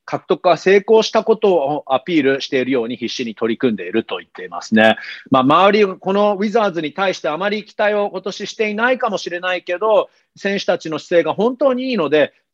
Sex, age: male, 40-59